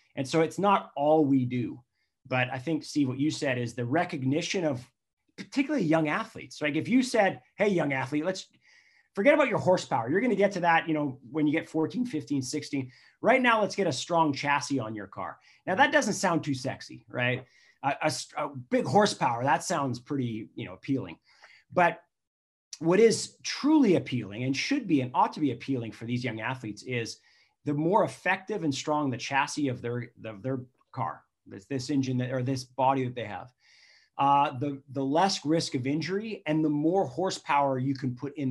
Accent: American